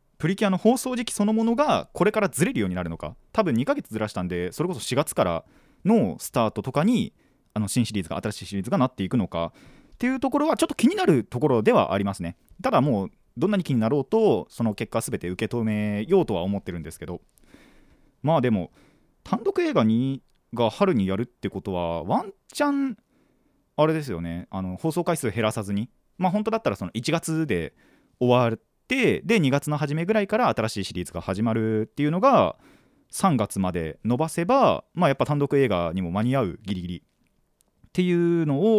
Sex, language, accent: male, Japanese, native